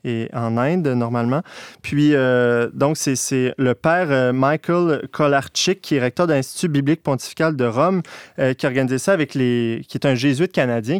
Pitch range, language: 120-150 Hz, French